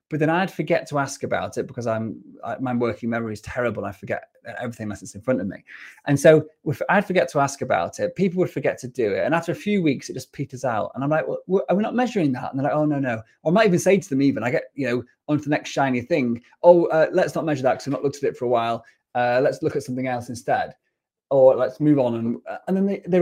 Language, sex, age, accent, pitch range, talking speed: English, male, 30-49, British, 125-160 Hz, 295 wpm